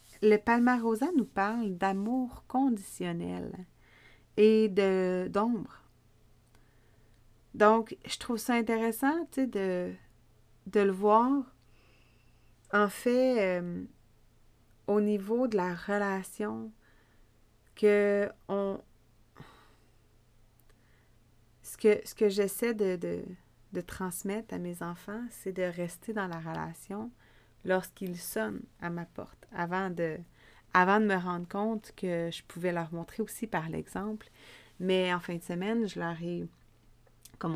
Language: French